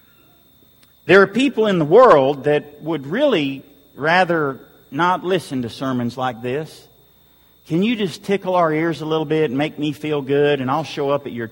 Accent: American